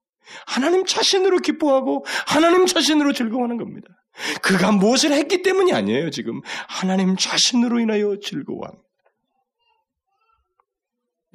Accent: native